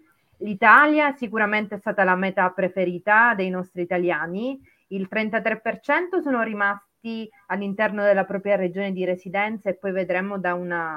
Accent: native